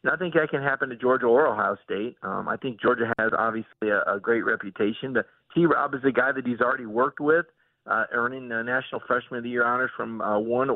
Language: English